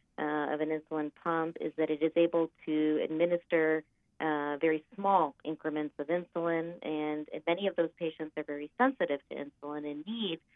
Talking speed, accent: 170 wpm, American